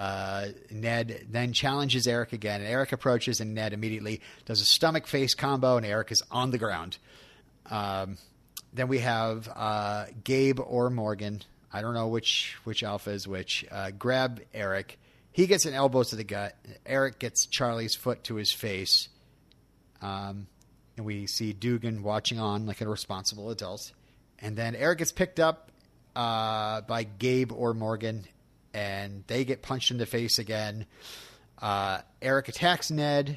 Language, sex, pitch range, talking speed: English, male, 105-130 Hz, 165 wpm